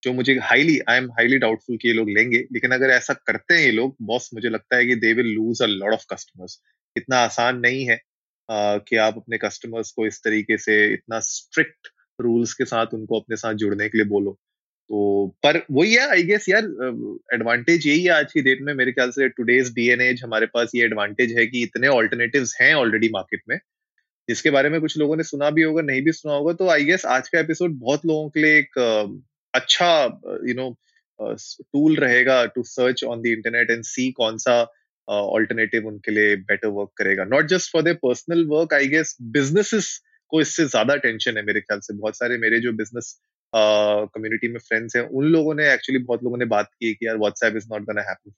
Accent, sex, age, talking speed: native, male, 20-39, 155 wpm